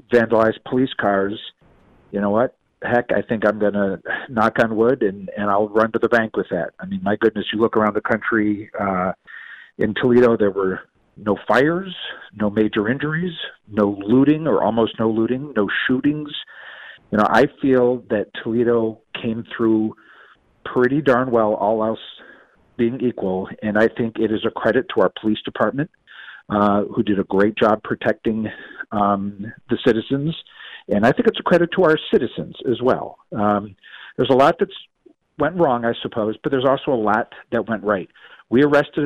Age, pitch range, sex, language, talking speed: 50-69, 105-125 Hz, male, English, 180 wpm